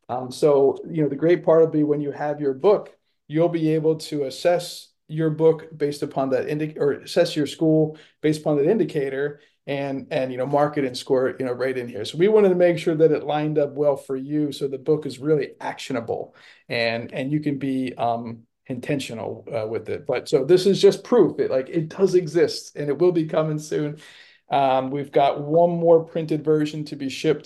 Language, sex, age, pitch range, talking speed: English, male, 40-59, 135-160 Hz, 225 wpm